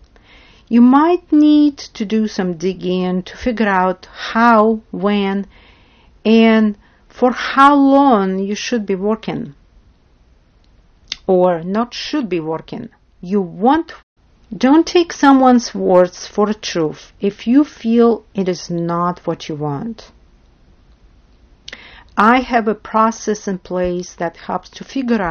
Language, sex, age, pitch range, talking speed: English, female, 50-69, 175-230 Hz, 125 wpm